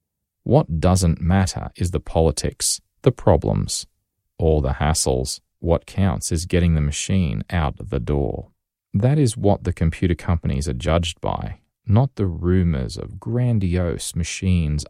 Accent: Australian